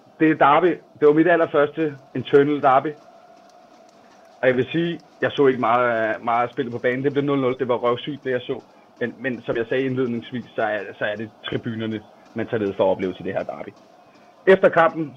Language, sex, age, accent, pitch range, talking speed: Danish, male, 30-49, native, 120-155 Hz, 210 wpm